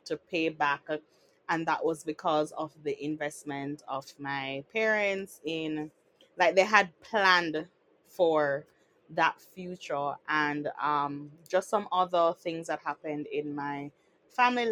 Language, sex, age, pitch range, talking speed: English, female, 20-39, 155-210 Hz, 130 wpm